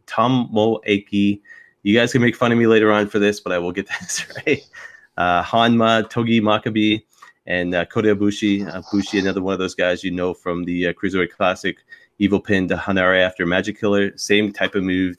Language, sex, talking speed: English, male, 210 wpm